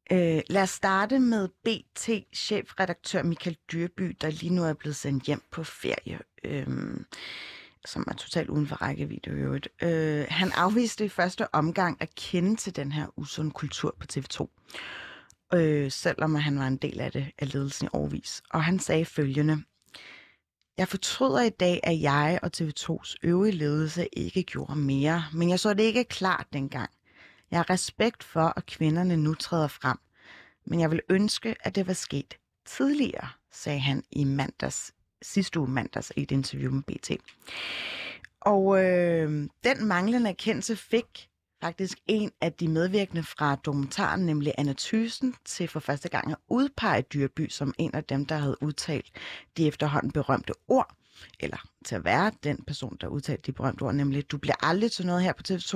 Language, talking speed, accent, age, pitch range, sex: Danish, 170 wpm, native, 30-49, 145-190 Hz, female